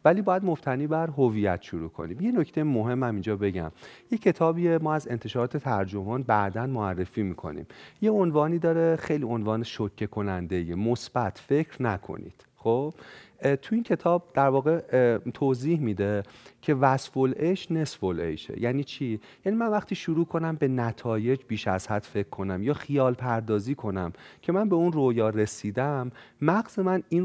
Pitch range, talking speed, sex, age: 105-155 Hz, 155 wpm, male, 40-59